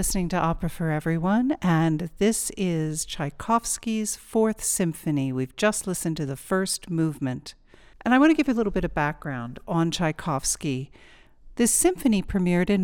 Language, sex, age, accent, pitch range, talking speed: English, female, 50-69, American, 160-210 Hz, 165 wpm